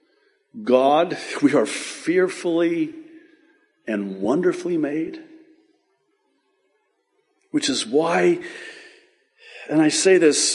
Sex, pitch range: male, 265-340 Hz